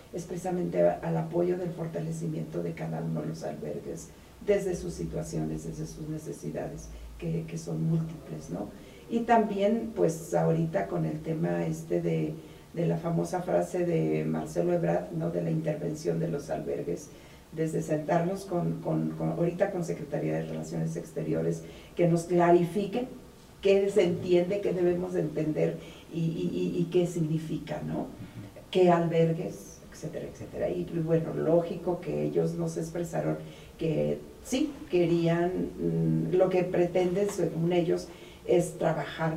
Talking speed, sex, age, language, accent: 145 wpm, female, 40-59, Spanish, Mexican